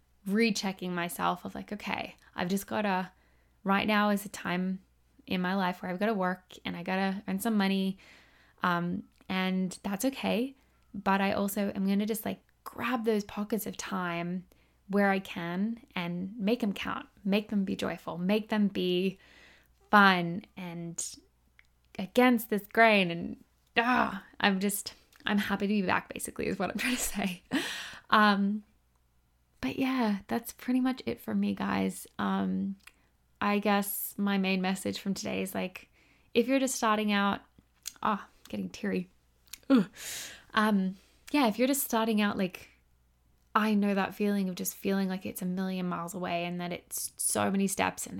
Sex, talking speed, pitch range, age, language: female, 170 wpm, 180-210 Hz, 10-29, English